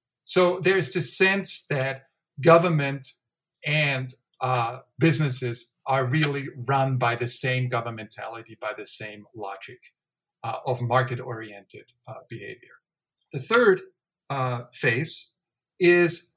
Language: English